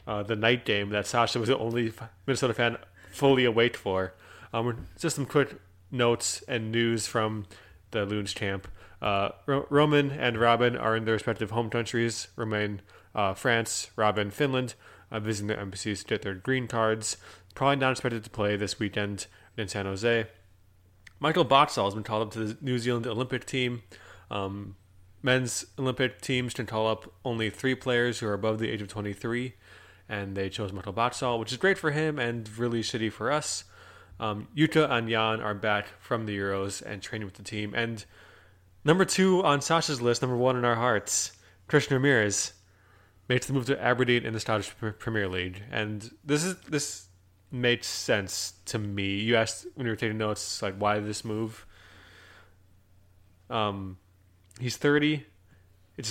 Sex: male